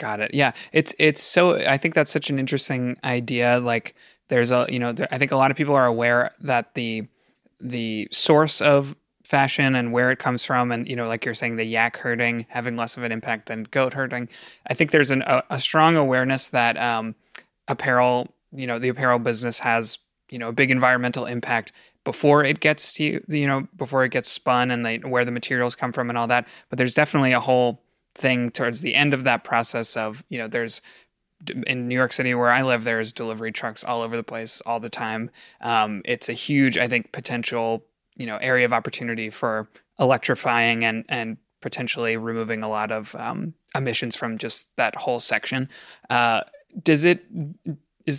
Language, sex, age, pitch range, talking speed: English, male, 20-39, 115-135 Hz, 205 wpm